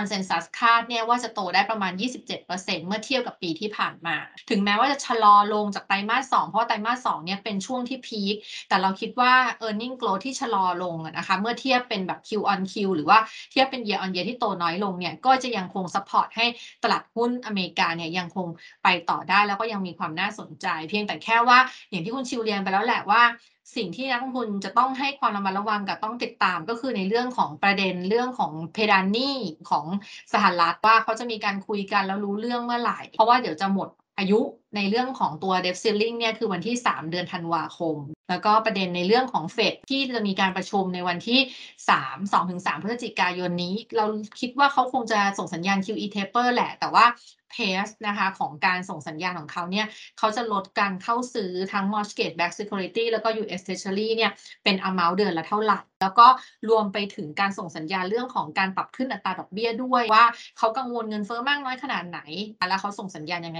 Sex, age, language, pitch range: female, 20-39, Thai, 190-230 Hz